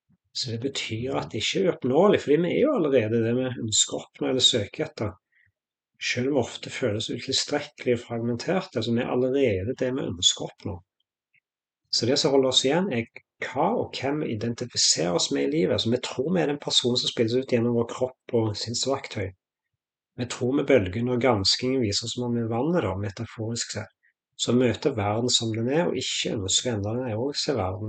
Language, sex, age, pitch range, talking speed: English, male, 30-49, 110-135 Hz, 205 wpm